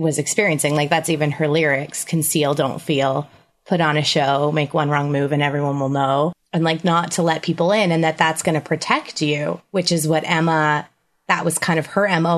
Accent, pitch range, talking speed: American, 150-170 Hz, 225 wpm